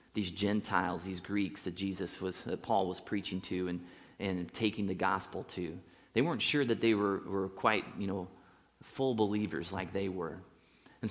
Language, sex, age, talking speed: English, male, 30-49, 185 wpm